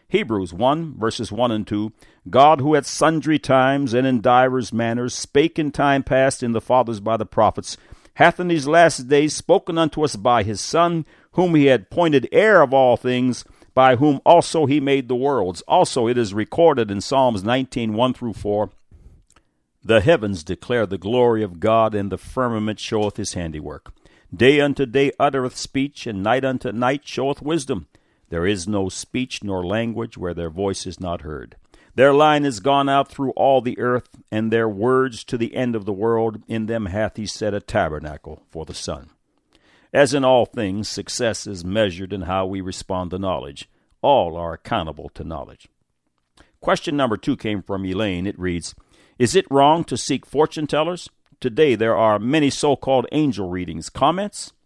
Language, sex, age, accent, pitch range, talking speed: English, male, 60-79, American, 100-140 Hz, 180 wpm